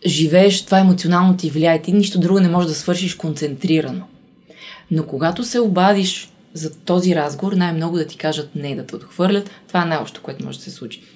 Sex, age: female, 20-39